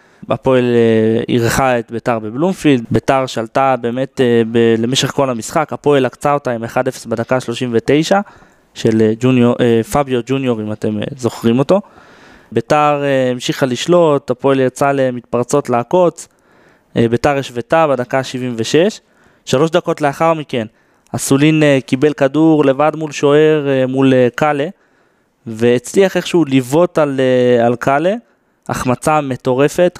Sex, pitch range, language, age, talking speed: male, 125-150 Hz, Hebrew, 20-39, 130 wpm